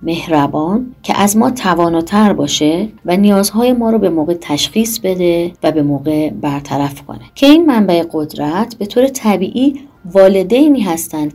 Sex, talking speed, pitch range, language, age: female, 150 wpm, 150-220 Hz, Persian, 30-49